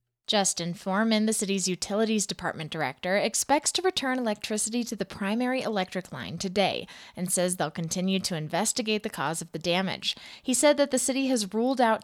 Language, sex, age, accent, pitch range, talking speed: English, female, 20-39, American, 175-220 Hz, 180 wpm